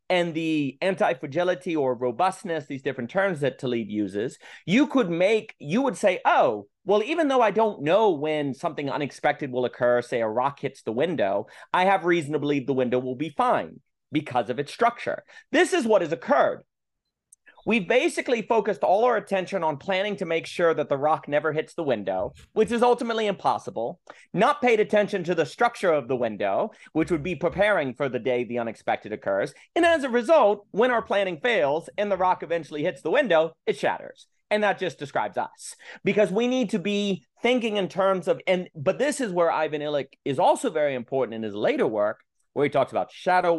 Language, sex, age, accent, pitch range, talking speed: English, male, 30-49, American, 150-220 Hz, 200 wpm